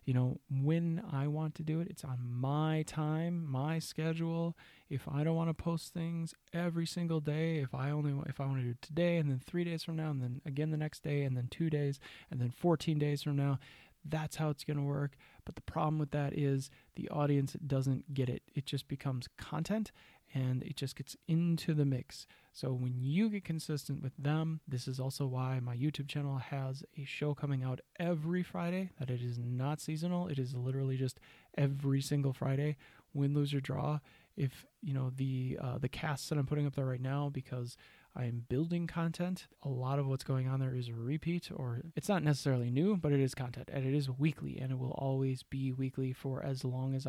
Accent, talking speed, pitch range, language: American, 220 wpm, 130-155 Hz, English